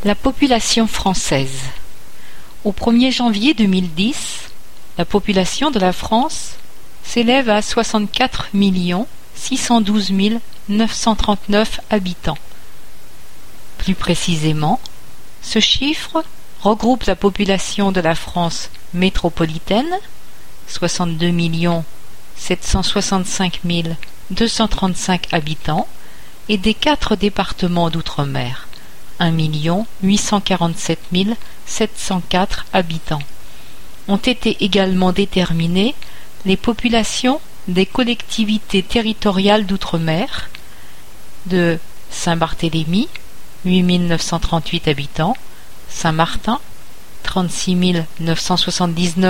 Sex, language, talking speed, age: female, French, 75 wpm, 50-69